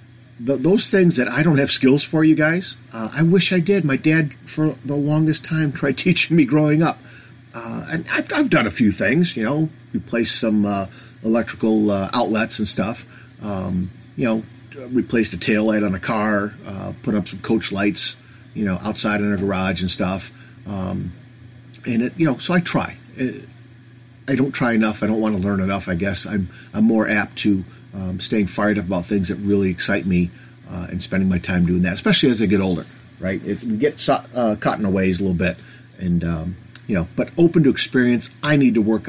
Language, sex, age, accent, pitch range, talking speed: English, male, 40-59, American, 100-130 Hz, 215 wpm